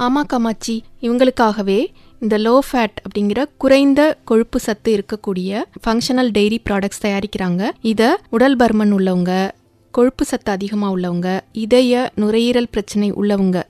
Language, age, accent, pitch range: English, 30-49, Indian, 200-245 Hz